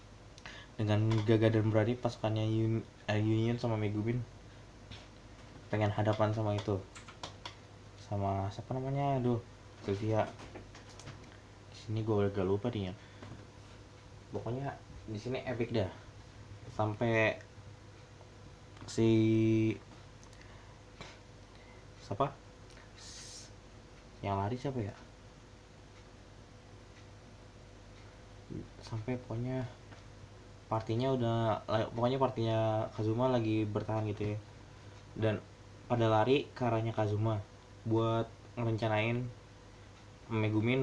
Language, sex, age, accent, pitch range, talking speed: Indonesian, male, 20-39, native, 100-120 Hz, 80 wpm